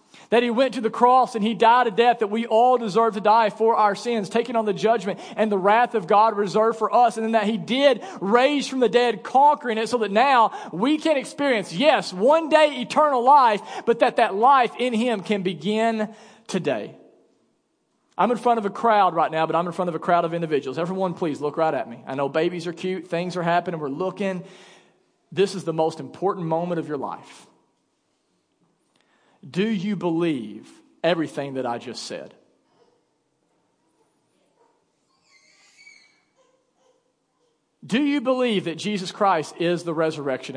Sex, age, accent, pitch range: male, 40-59, American, 175-235 Hz